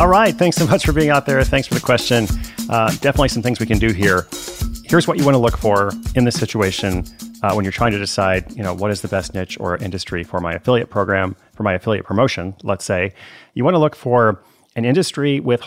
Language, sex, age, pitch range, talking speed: English, male, 30-49, 95-120 Hz, 245 wpm